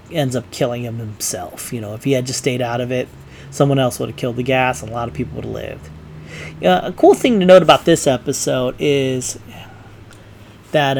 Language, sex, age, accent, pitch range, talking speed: English, male, 30-49, American, 125-150 Hz, 225 wpm